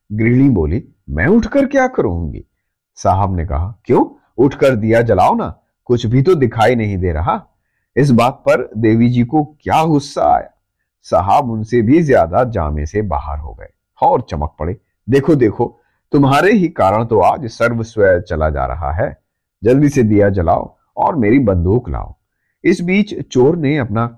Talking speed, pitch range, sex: 165 wpm, 90-145 Hz, male